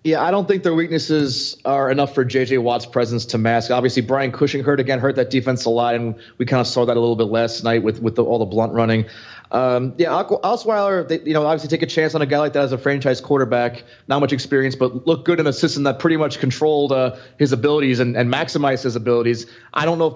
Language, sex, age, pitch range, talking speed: English, male, 30-49, 120-145 Hz, 255 wpm